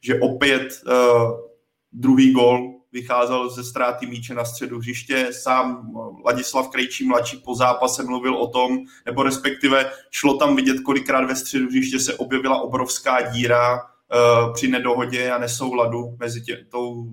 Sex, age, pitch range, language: male, 20-39, 125-135 Hz, Czech